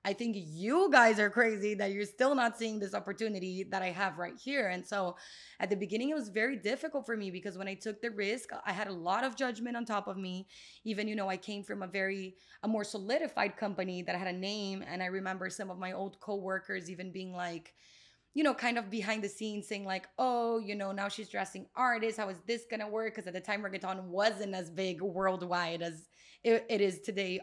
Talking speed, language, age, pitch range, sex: 235 wpm, English, 20-39, 185-225 Hz, female